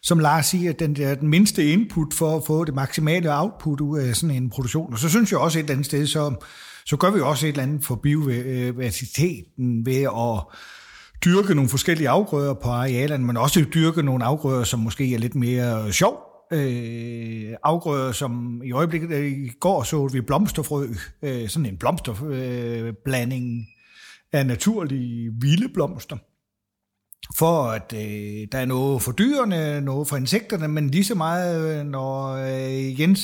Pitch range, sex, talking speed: 125-165 Hz, male, 160 wpm